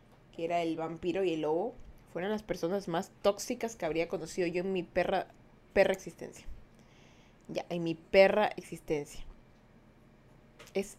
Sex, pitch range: female, 165-225 Hz